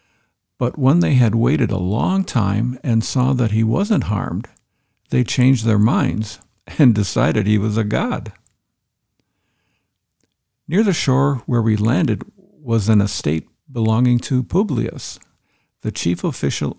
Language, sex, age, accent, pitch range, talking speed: English, male, 50-69, American, 105-130 Hz, 140 wpm